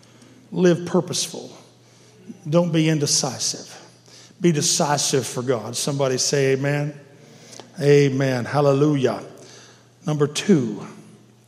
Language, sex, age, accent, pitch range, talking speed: English, male, 50-69, American, 150-185 Hz, 85 wpm